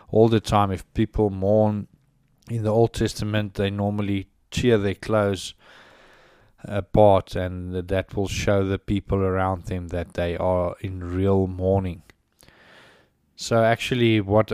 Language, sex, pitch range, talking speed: English, male, 95-110 Hz, 135 wpm